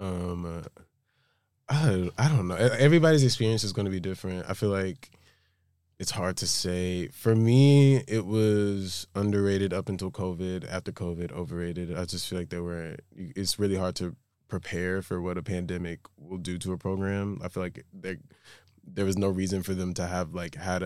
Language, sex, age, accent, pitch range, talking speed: English, male, 20-39, American, 85-95 Hz, 185 wpm